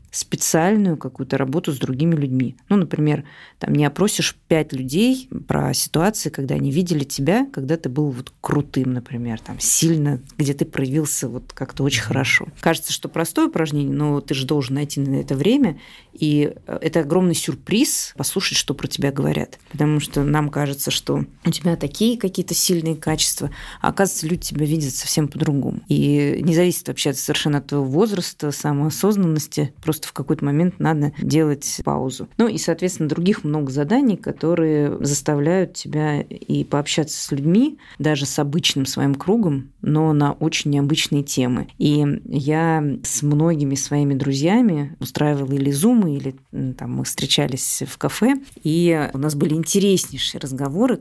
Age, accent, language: 30-49, native, Russian